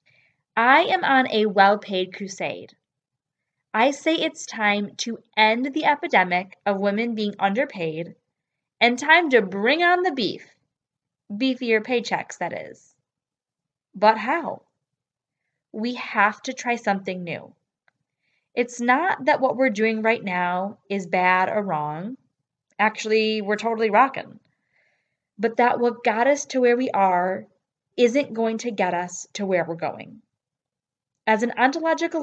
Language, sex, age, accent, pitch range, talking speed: English, female, 20-39, American, 185-245 Hz, 140 wpm